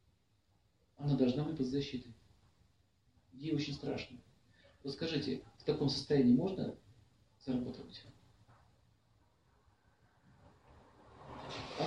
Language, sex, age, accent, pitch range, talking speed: Russian, male, 50-69, native, 105-135 Hz, 75 wpm